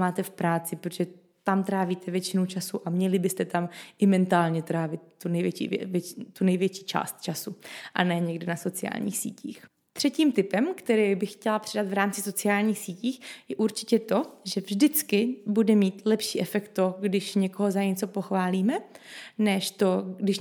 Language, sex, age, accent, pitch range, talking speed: Czech, female, 20-39, native, 180-215 Hz, 165 wpm